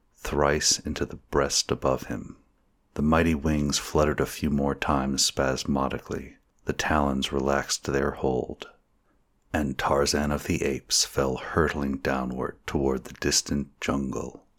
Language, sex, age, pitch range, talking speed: English, male, 40-59, 70-75 Hz, 130 wpm